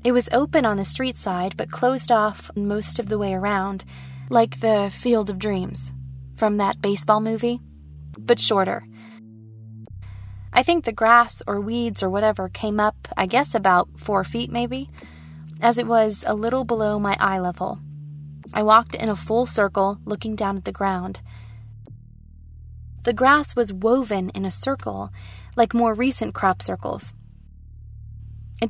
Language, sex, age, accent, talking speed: English, female, 20-39, American, 155 wpm